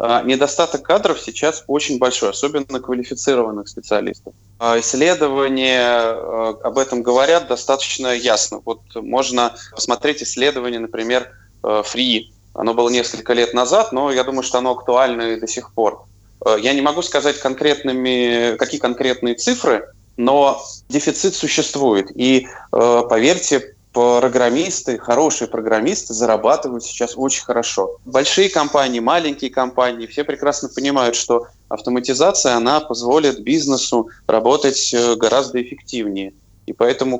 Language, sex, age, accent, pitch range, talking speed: Russian, male, 20-39, native, 115-135 Hz, 115 wpm